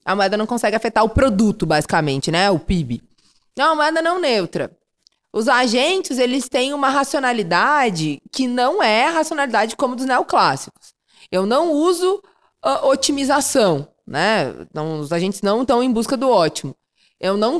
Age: 20-39